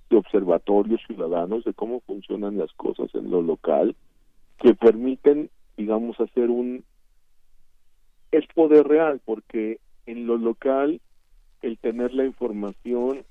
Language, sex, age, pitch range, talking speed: Spanish, male, 50-69, 100-130 Hz, 120 wpm